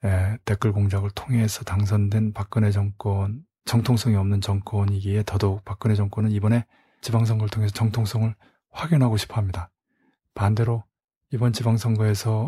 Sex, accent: male, native